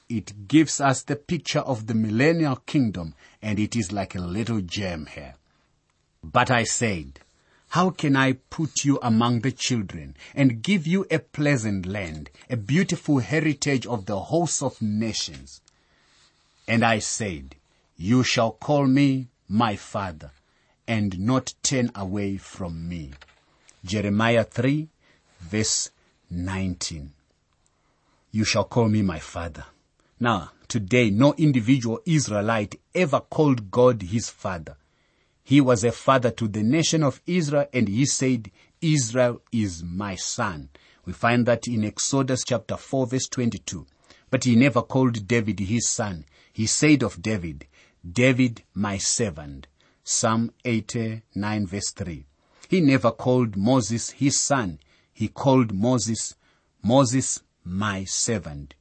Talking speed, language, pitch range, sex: 135 wpm, English, 95-130 Hz, male